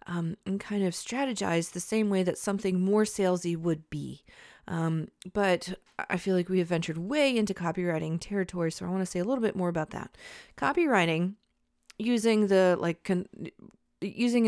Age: 30-49